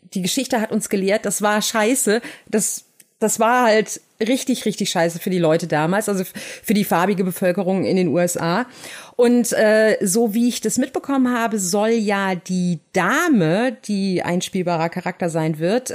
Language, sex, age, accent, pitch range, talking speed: German, female, 30-49, German, 190-240 Hz, 170 wpm